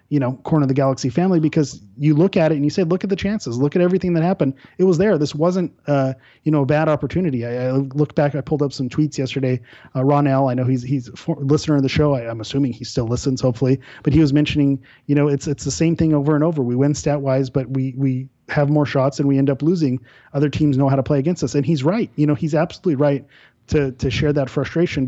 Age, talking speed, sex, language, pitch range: 30-49, 275 wpm, male, English, 135-155 Hz